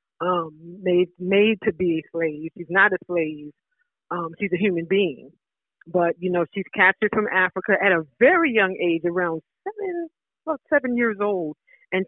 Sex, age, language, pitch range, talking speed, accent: female, 50-69, English, 180-260 Hz, 175 wpm, American